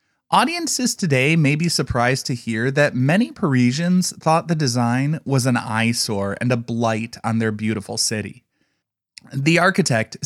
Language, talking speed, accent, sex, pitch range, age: English, 145 wpm, American, male, 115-160 Hz, 20-39